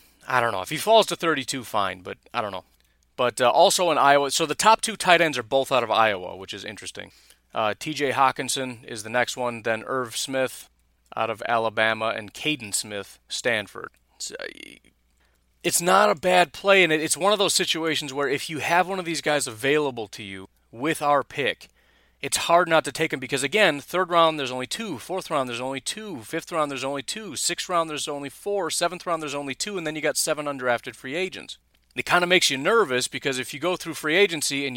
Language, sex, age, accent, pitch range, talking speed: English, male, 30-49, American, 115-160 Hz, 230 wpm